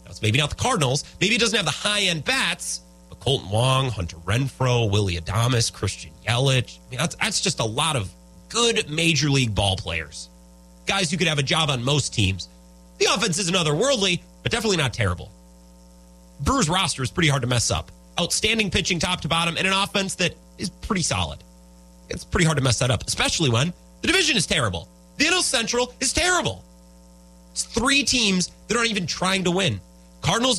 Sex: male